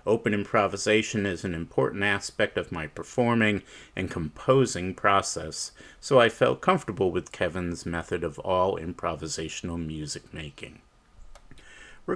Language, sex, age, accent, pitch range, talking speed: English, male, 50-69, American, 90-110 Hz, 125 wpm